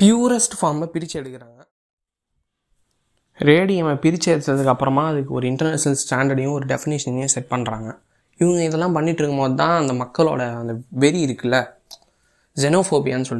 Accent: native